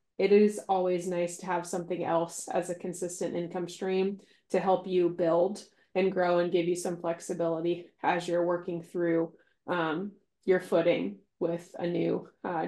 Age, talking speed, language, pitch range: 20-39, 165 wpm, English, 175-195 Hz